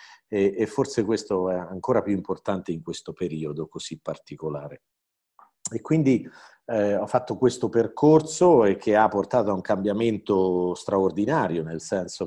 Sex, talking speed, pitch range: male, 145 wpm, 95-110 Hz